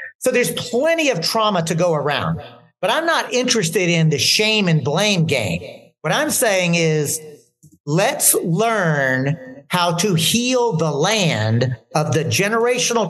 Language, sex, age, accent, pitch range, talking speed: English, male, 50-69, American, 160-245 Hz, 145 wpm